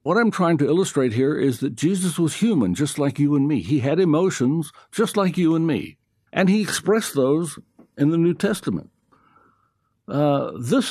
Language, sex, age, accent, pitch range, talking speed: English, male, 60-79, American, 115-170 Hz, 185 wpm